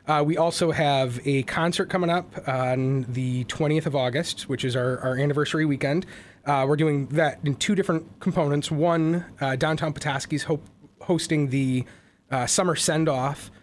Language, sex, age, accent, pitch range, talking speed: English, male, 20-39, American, 135-160 Hz, 160 wpm